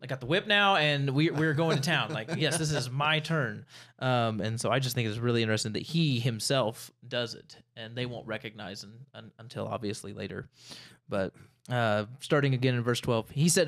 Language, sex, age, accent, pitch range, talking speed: English, male, 20-39, American, 115-150 Hz, 205 wpm